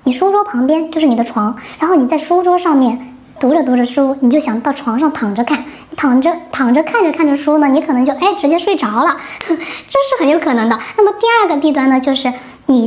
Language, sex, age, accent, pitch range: Chinese, male, 10-29, native, 250-320 Hz